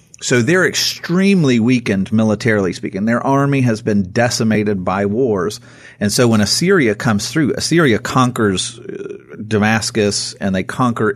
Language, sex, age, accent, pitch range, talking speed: English, male, 40-59, American, 105-125 Hz, 135 wpm